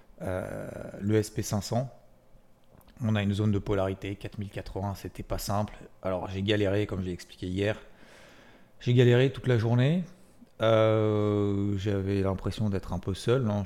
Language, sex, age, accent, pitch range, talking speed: French, male, 30-49, French, 100-115 Hz, 145 wpm